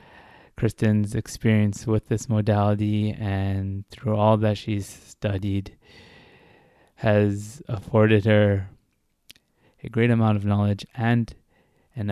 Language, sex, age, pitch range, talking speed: English, male, 20-39, 100-110 Hz, 105 wpm